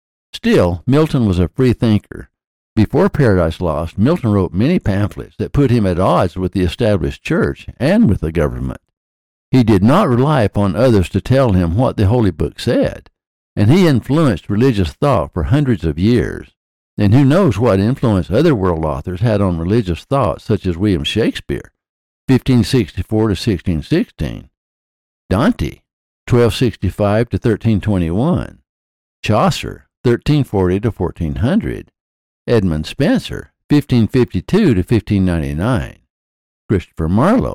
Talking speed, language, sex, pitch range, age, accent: 140 wpm, English, male, 90-125 Hz, 60-79, American